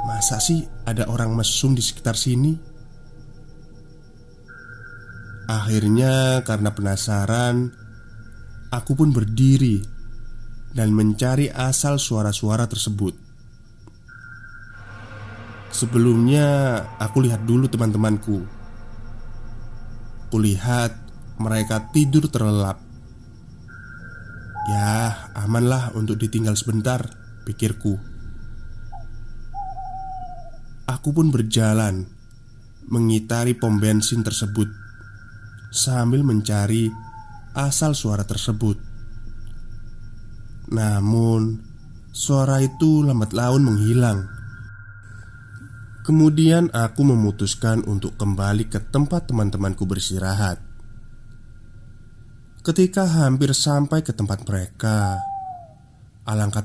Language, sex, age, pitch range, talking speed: Indonesian, male, 20-39, 110-125 Hz, 70 wpm